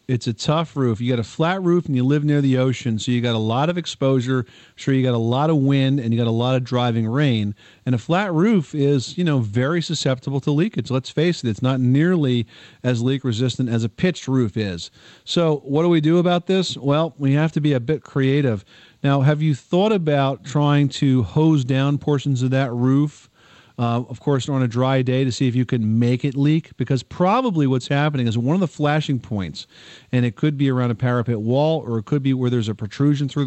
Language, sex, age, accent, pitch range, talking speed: English, male, 40-59, American, 120-145 Hz, 235 wpm